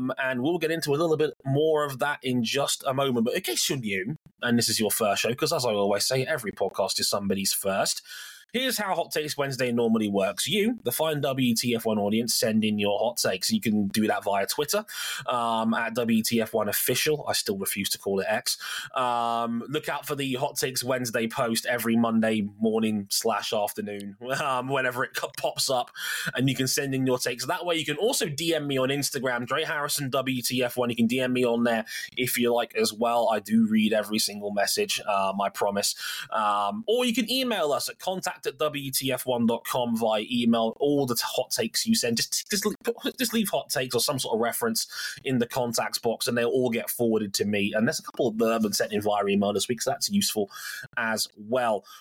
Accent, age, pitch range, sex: British, 20-39, 115-150 Hz, male